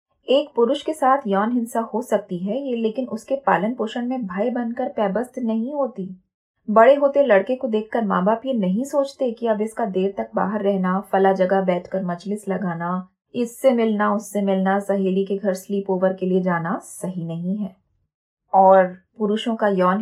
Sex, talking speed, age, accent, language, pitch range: female, 185 wpm, 20-39, native, Hindi, 185-235 Hz